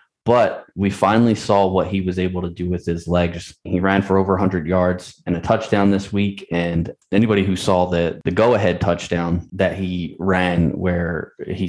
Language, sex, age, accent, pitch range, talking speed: English, male, 20-39, American, 90-100 Hz, 190 wpm